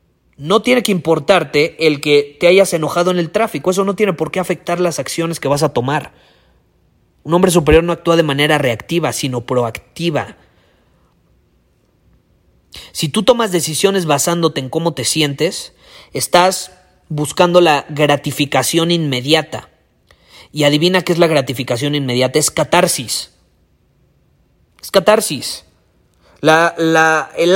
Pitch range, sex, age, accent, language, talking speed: 130-180 Hz, male, 30-49, Mexican, Spanish, 130 wpm